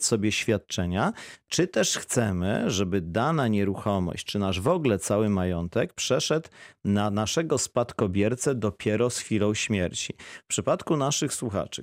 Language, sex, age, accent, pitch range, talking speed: Polish, male, 40-59, native, 100-120 Hz, 130 wpm